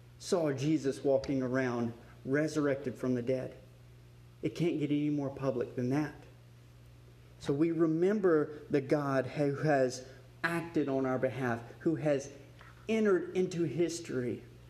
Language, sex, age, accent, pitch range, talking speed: English, male, 30-49, American, 120-155 Hz, 130 wpm